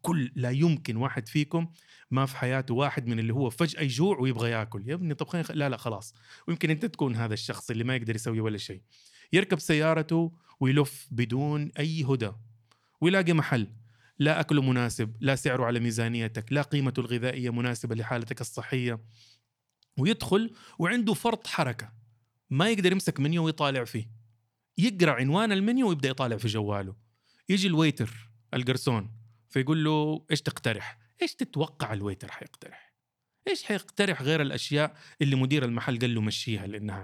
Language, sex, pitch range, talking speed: Arabic, male, 115-165 Hz, 150 wpm